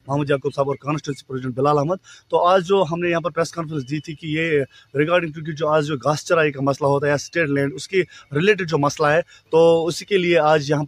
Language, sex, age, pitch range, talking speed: Urdu, male, 30-49, 150-190 Hz, 255 wpm